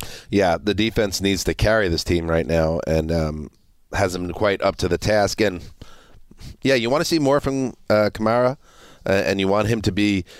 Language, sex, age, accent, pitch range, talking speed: English, male, 30-49, American, 95-115 Hz, 210 wpm